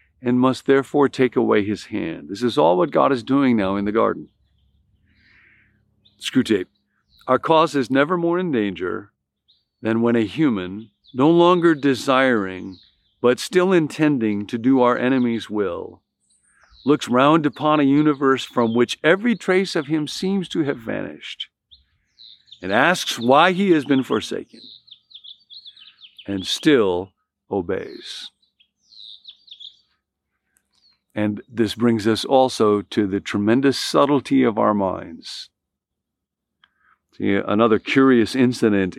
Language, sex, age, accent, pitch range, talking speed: English, male, 50-69, American, 100-140 Hz, 130 wpm